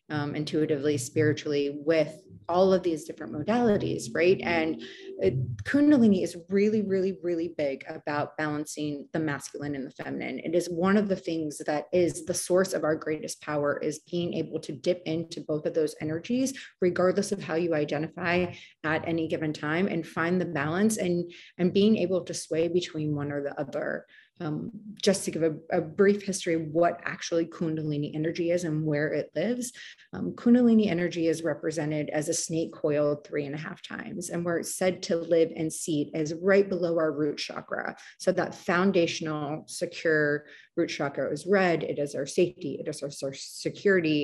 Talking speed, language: 180 wpm, English